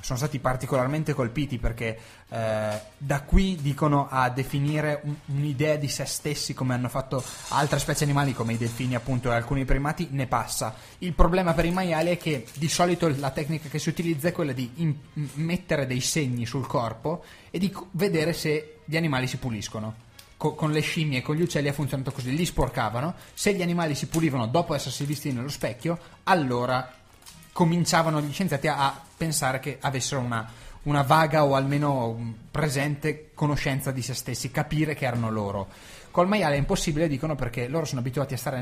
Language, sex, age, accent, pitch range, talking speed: Italian, male, 20-39, native, 130-165 Hz, 180 wpm